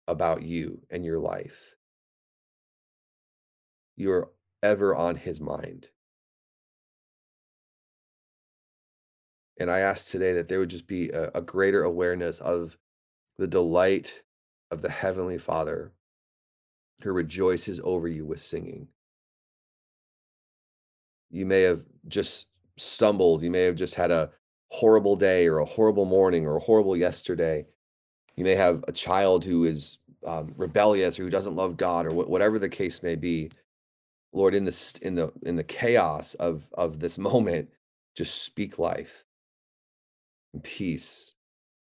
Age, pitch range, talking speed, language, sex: 30-49, 80-95 Hz, 135 wpm, English, male